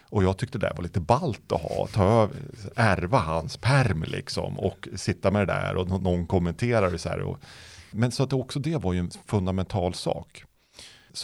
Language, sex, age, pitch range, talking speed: Swedish, male, 40-59, 90-130 Hz, 205 wpm